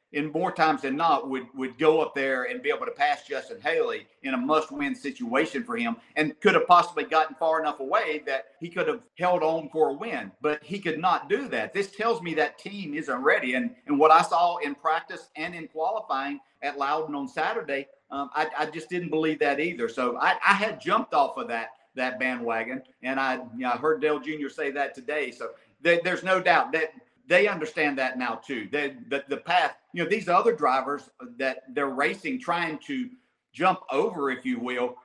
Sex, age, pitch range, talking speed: male, 50-69, 135-195 Hz, 215 wpm